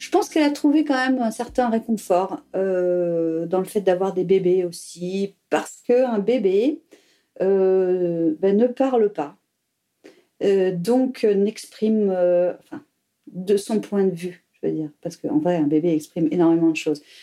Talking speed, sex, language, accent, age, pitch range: 165 wpm, female, French, French, 40-59, 175-235 Hz